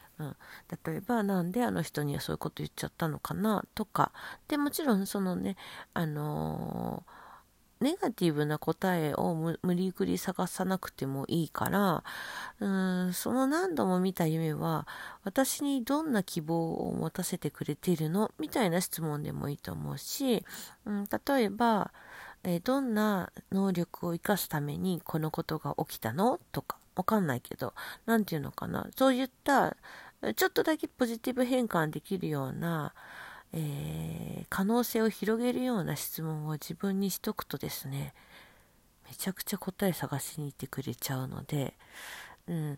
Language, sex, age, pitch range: Japanese, female, 40-59, 150-210 Hz